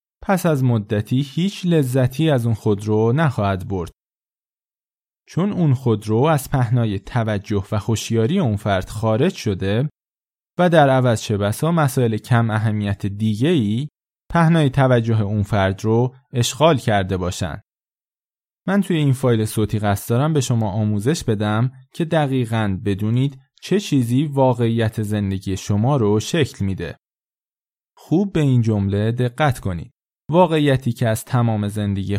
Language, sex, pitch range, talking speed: Persian, male, 105-140 Hz, 130 wpm